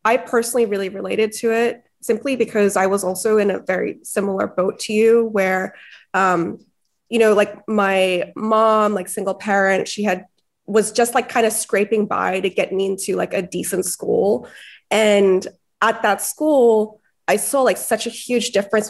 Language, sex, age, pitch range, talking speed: English, female, 20-39, 185-220 Hz, 180 wpm